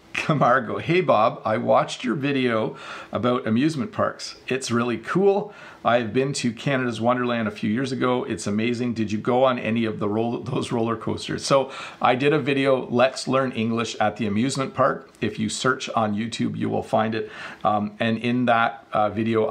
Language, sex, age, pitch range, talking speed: English, male, 40-59, 110-130 Hz, 190 wpm